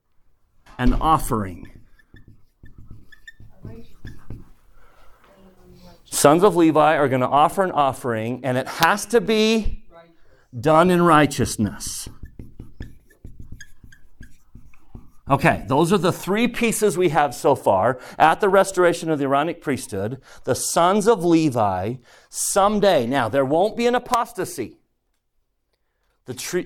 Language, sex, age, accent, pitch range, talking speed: English, male, 40-59, American, 135-195 Hz, 110 wpm